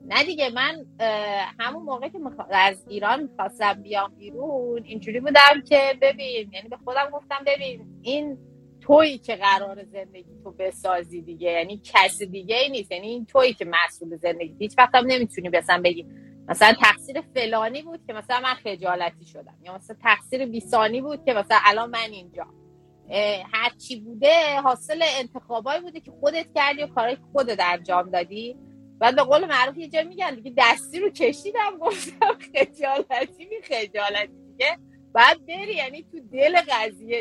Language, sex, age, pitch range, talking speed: Persian, female, 30-49, 190-275 Hz, 160 wpm